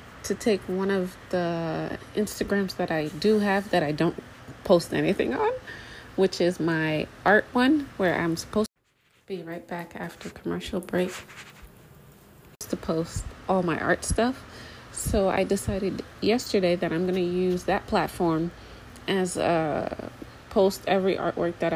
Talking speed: 150 wpm